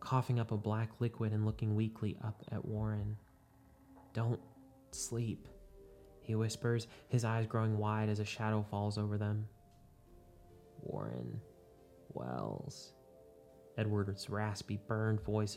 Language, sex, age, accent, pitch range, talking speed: English, male, 20-39, American, 105-120 Hz, 120 wpm